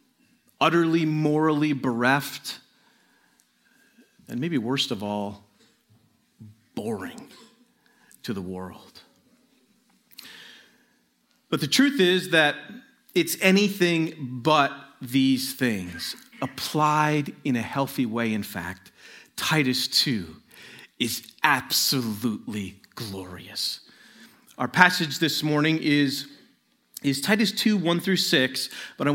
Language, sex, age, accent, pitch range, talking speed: English, male, 40-59, American, 115-160 Hz, 95 wpm